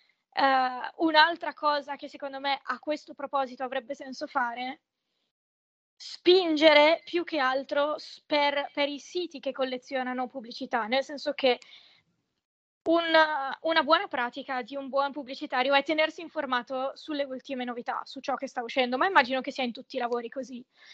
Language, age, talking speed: Italian, 20-39, 150 wpm